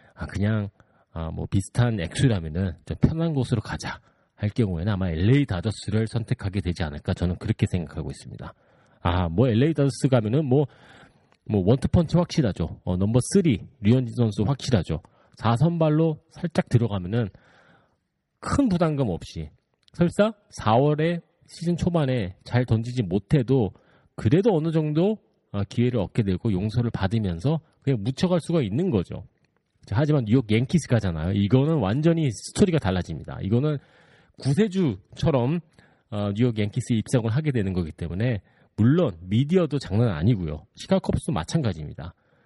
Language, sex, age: Korean, male, 40-59